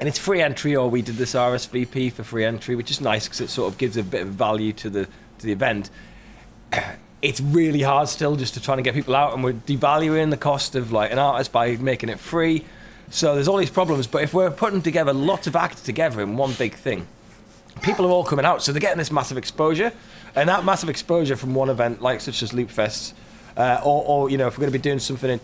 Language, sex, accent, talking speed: English, male, British, 250 wpm